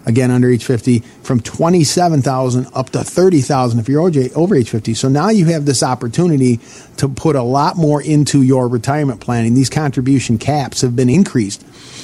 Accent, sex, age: American, male, 40-59